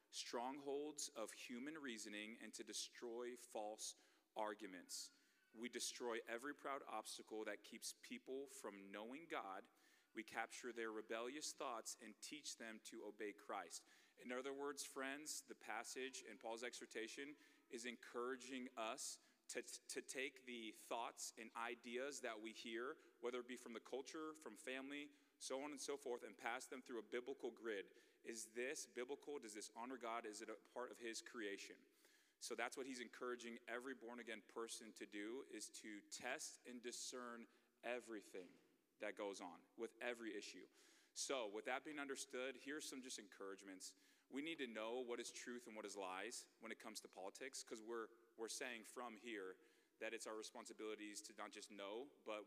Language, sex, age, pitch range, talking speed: English, male, 30-49, 110-140 Hz, 170 wpm